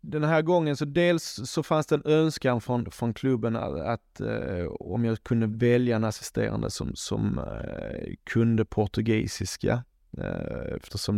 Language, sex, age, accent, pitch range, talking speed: Swedish, male, 20-39, native, 110-125 Hz, 155 wpm